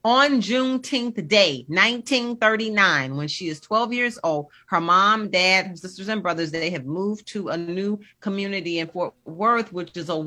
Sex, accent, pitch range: female, American, 160-215 Hz